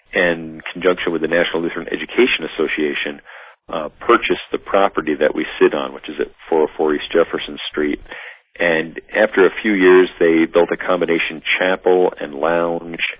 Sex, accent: male, American